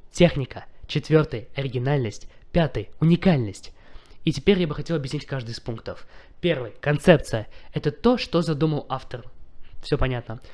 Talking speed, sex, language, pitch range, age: 130 wpm, male, Russian, 125-160 Hz, 20-39